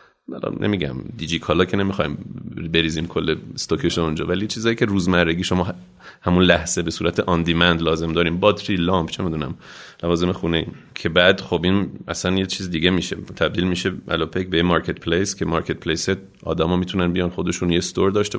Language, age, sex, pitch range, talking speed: Persian, 30-49, male, 85-95 Hz, 175 wpm